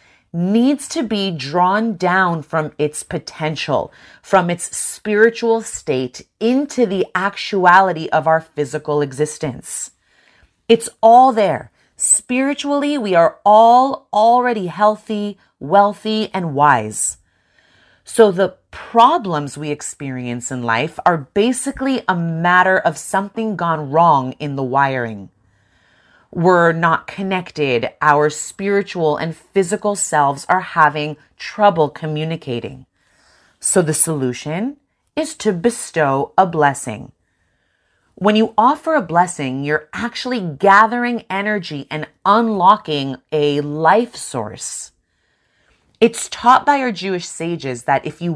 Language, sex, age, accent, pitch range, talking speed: English, female, 30-49, American, 150-215 Hz, 115 wpm